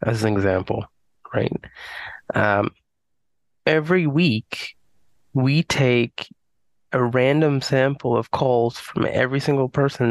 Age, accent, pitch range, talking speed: 20-39, American, 120-145 Hz, 105 wpm